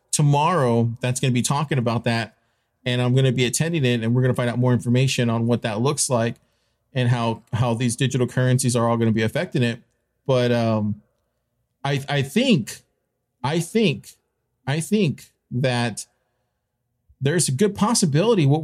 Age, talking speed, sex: 40-59, 175 wpm, male